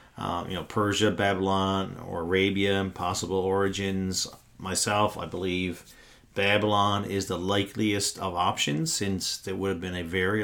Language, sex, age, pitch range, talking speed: English, male, 40-59, 95-110 Hz, 145 wpm